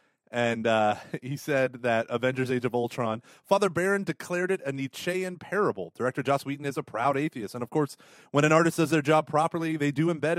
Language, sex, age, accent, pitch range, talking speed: English, male, 30-49, American, 110-145 Hz, 210 wpm